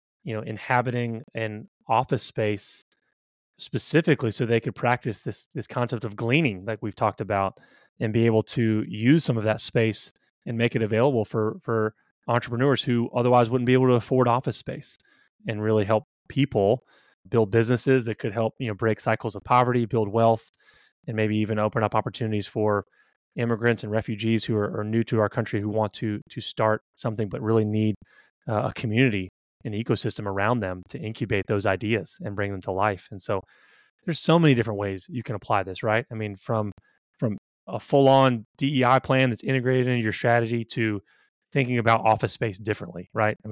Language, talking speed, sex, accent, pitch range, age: English, 190 wpm, male, American, 110-125 Hz, 20-39